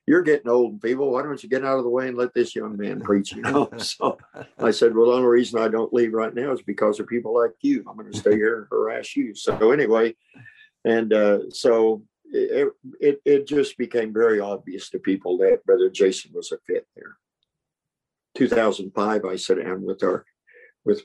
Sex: male